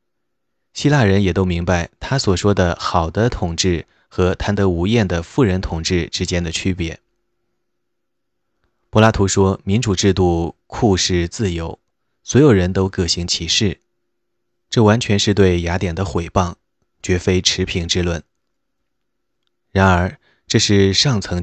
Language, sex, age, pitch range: Chinese, male, 20-39, 85-100 Hz